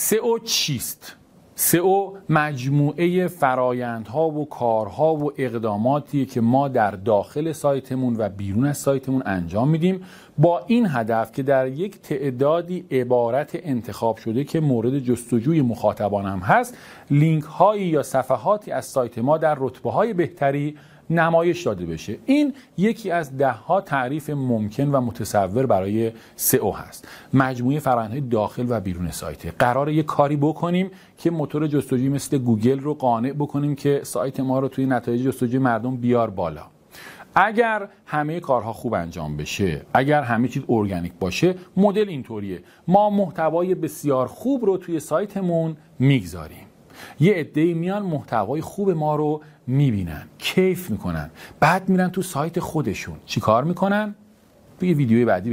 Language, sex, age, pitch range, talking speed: Persian, male, 40-59, 120-170 Hz, 145 wpm